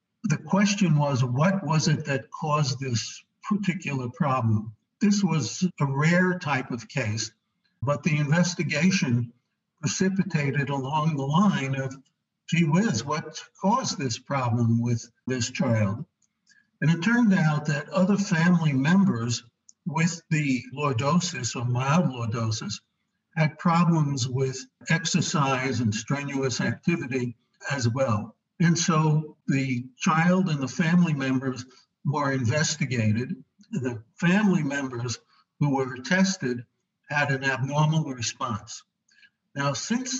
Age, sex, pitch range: 60-79, male, 130-175 Hz